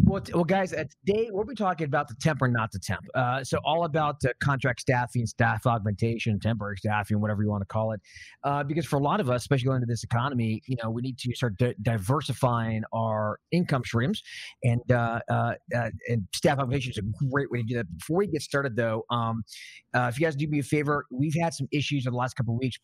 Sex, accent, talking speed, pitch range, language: male, American, 250 wpm, 115-155 Hz, English